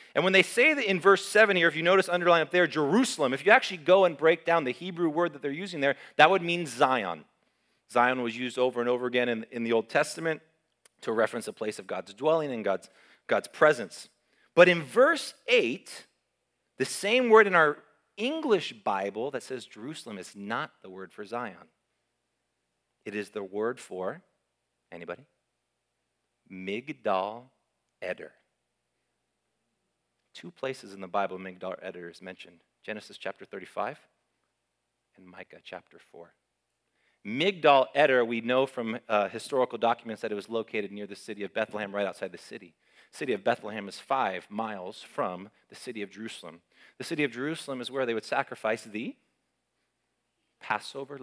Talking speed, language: 170 wpm, English